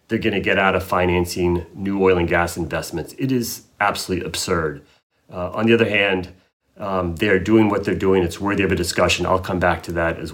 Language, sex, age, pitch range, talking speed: English, male, 30-49, 90-120 Hz, 215 wpm